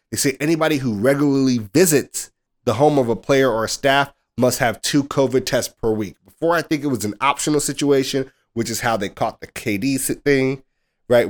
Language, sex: English, male